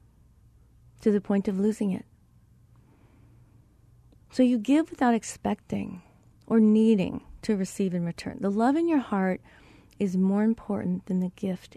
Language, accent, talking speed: English, American, 145 wpm